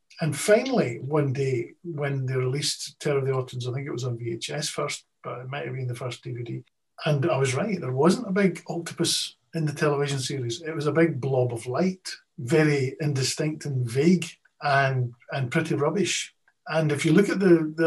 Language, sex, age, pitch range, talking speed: English, male, 50-69, 135-165 Hz, 205 wpm